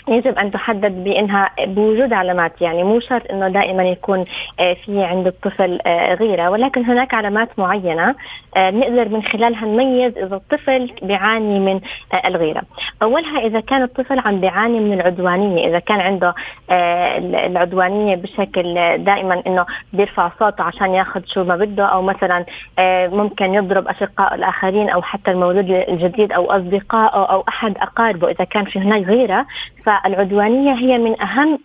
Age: 20-39